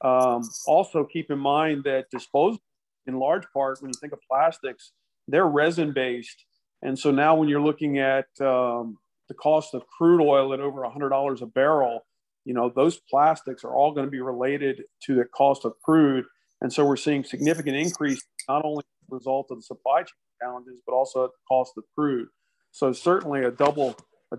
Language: English